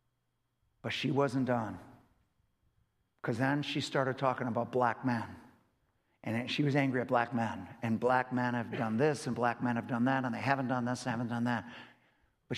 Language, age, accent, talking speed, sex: English, 50-69, American, 195 wpm, male